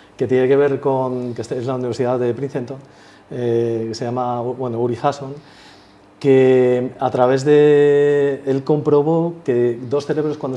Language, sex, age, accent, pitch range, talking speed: Spanish, male, 40-59, Spanish, 125-160 Hz, 160 wpm